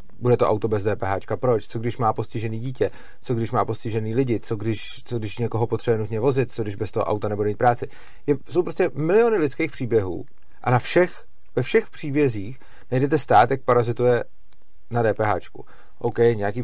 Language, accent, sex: Czech, native, male